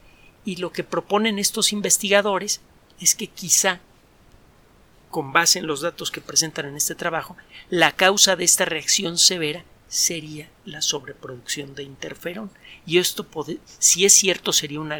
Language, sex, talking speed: Spanish, male, 150 wpm